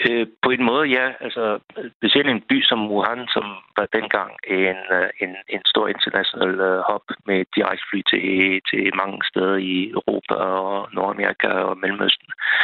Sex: male